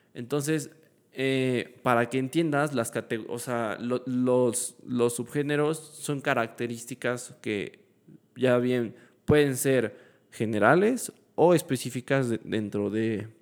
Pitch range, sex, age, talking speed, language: 115-140 Hz, male, 20-39, 110 wpm, Spanish